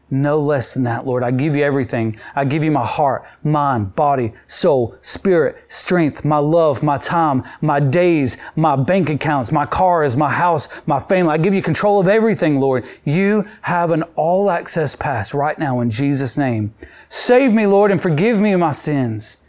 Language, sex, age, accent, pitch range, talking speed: English, male, 30-49, American, 130-175 Hz, 180 wpm